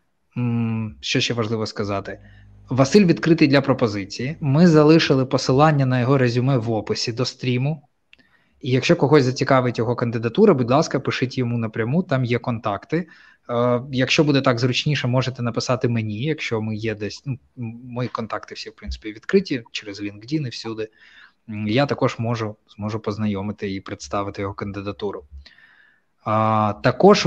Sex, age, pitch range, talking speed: male, 20-39, 110-135 Hz, 140 wpm